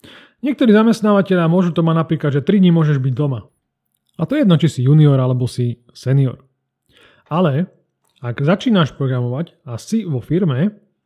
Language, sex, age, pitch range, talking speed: Slovak, male, 30-49, 135-185 Hz, 155 wpm